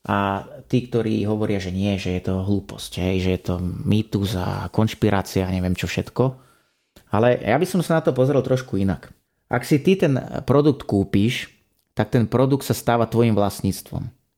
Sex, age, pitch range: male, 30-49, 100-120 Hz